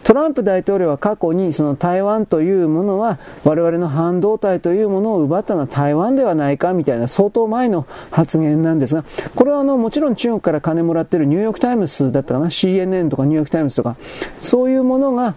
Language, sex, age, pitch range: Japanese, male, 40-59, 160-225 Hz